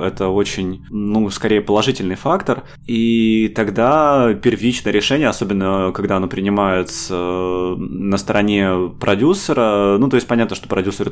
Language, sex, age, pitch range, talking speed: Russian, male, 20-39, 95-110 Hz, 125 wpm